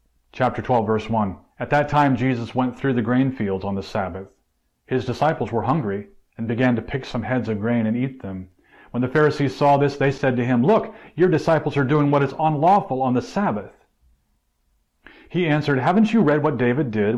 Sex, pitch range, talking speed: male, 120-155 Hz, 205 wpm